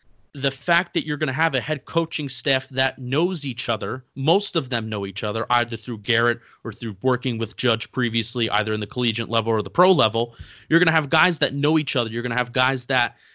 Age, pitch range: 30-49, 125-155 Hz